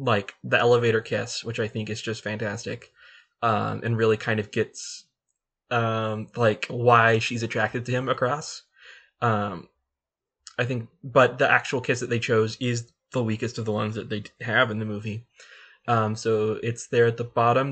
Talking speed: 180 wpm